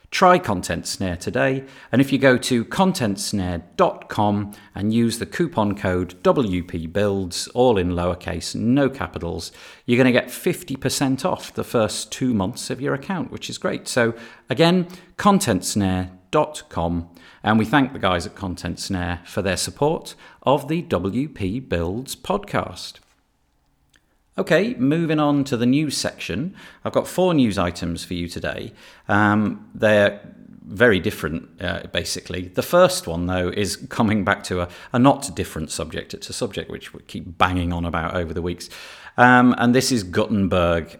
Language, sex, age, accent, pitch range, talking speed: English, male, 40-59, British, 90-125 Hz, 155 wpm